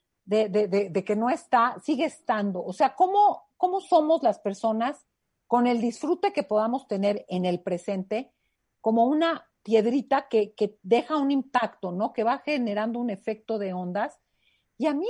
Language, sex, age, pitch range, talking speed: Spanish, female, 50-69, 195-255 Hz, 165 wpm